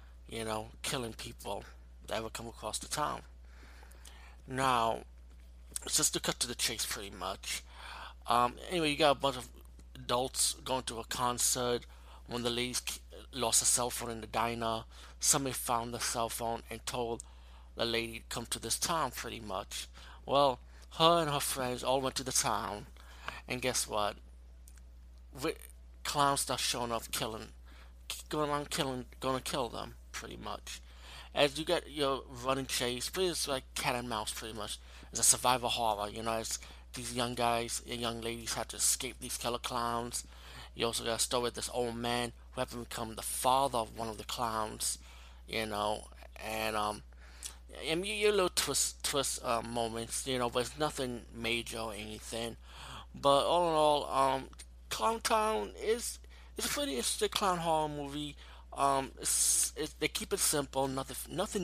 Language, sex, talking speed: English, male, 170 wpm